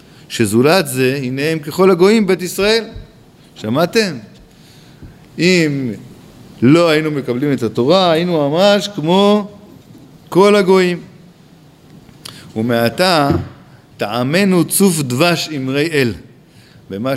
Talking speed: 95 wpm